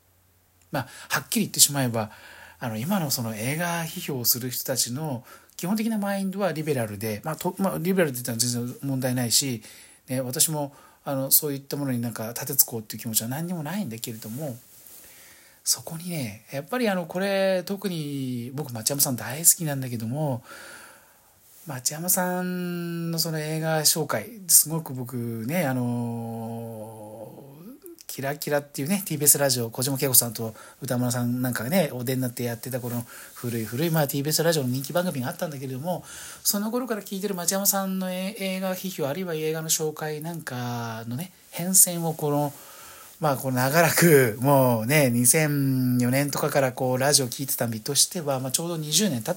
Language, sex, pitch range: Japanese, male, 120-170 Hz